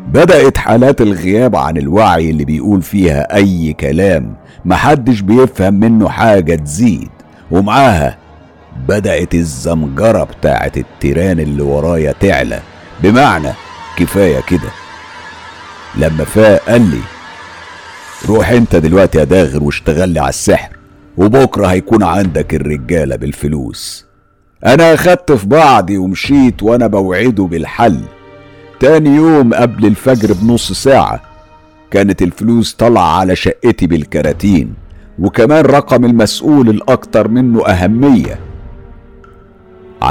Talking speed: 105 wpm